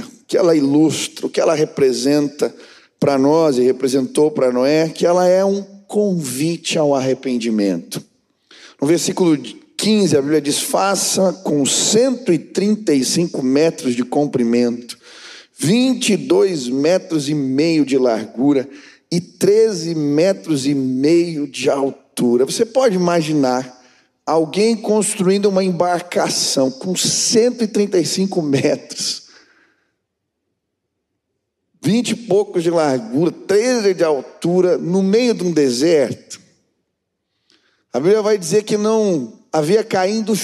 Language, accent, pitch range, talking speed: Portuguese, Brazilian, 145-210 Hz, 115 wpm